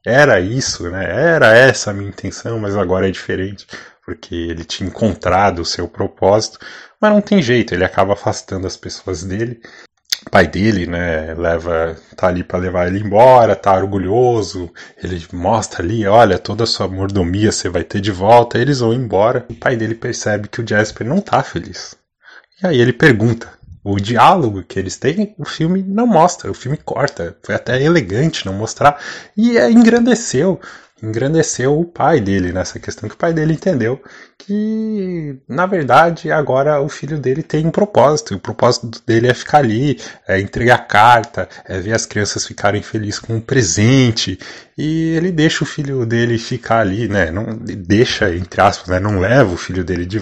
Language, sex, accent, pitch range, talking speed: Portuguese, male, Brazilian, 95-135 Hz, 180 wpm